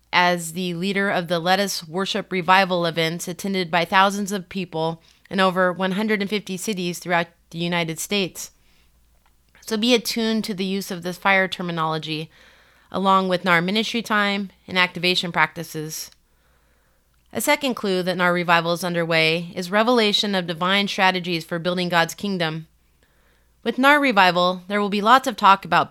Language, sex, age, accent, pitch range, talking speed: English, female, 30-49, American, 175-205 Hz, 155 wpm